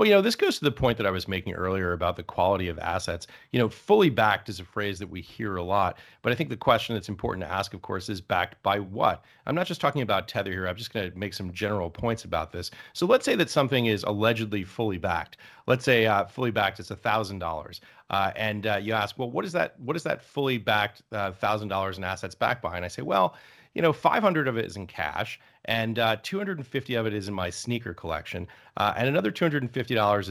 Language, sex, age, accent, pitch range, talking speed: English, male, 40-59, American, 95-115 Hz, 250 wpm